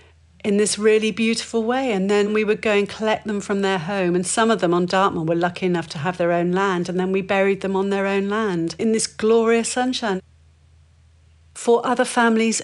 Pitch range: 180-210 Hz